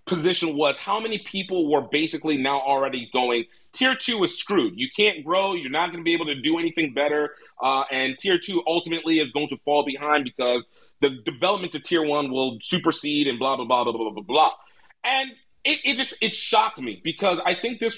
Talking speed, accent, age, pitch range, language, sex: 215 wpm, American, 30-49, 135-175 Hz, English, male